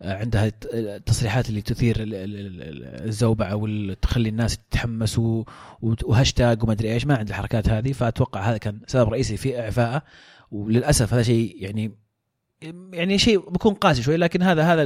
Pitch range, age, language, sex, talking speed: 115-140 Hz, 30-49, Arabic, male, 140 wpm